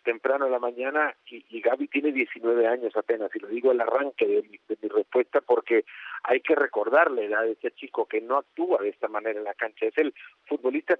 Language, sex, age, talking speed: Spanish, male, 50-69, 230 wpm